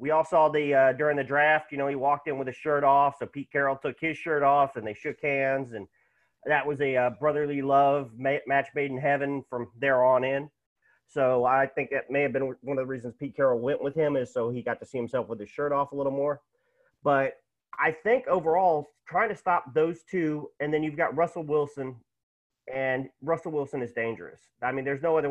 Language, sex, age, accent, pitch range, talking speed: English, male, 40-59, American, 135-165 Hz, 235 wpm